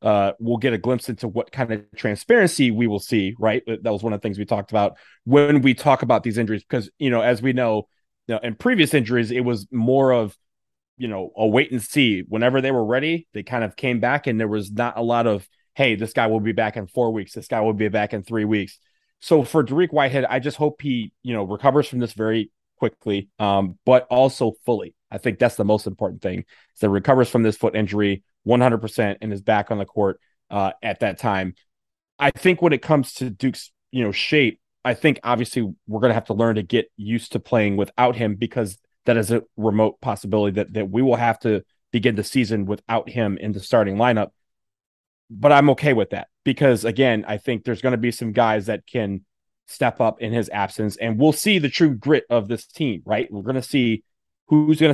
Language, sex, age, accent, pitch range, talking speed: English, male, 20-39, American, 105-125 Hz, 235 wpm